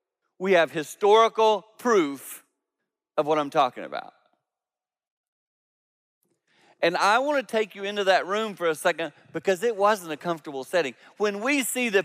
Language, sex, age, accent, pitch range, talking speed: English, male, 40-59, American, 155-210 Hz, 155 wpm